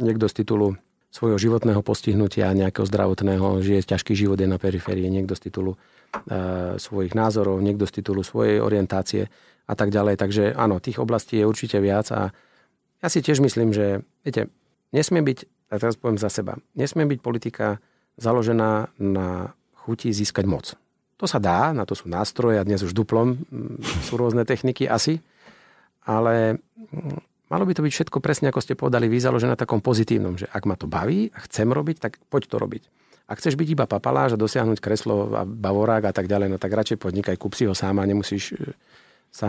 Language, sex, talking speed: Slovak, male, 190 wpm